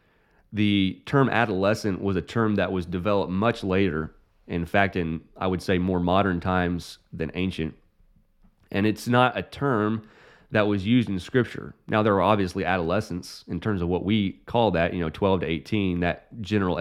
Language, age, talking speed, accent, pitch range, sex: English, 30-49, 180 wpm, American, 90-110 Hz, male